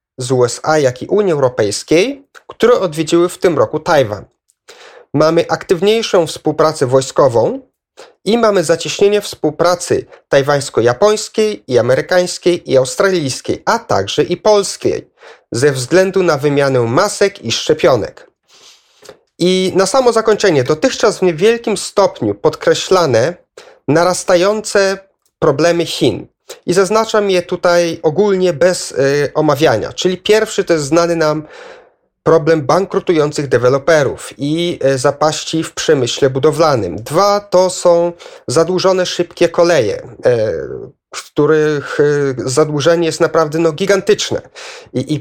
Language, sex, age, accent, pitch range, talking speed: Polish, male, 40-59, native, 155-205 Hz, 110 wpm